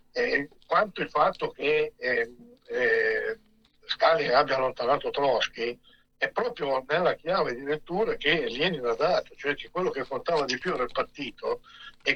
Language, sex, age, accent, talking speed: Italian, male, 60-79, native, 155 wpm